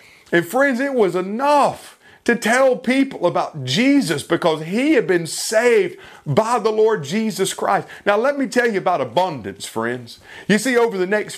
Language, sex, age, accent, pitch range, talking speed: English, male, 40-59, American, 140-210 Hz, 175 wpm